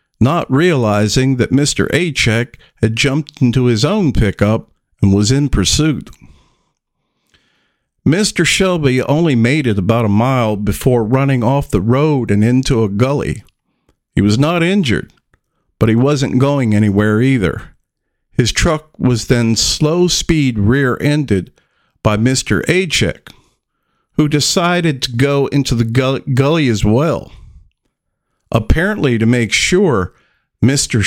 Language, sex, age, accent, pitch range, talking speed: English, male, 50-69, American, 110-150 Hz, 130 wpm